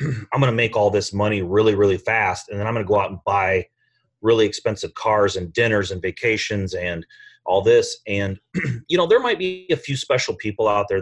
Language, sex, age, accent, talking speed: English, male, 30-49, American, 225 wpm